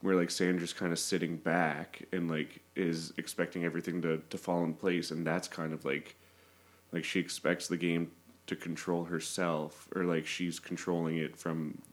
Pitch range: 85-90 Hz